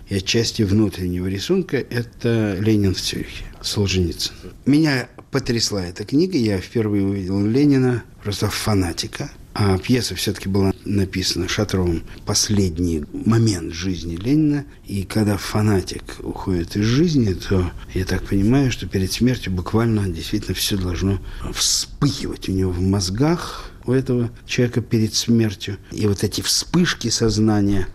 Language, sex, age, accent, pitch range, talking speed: Russian, male, 50-69, native, 95-120 Hz, 130 wpm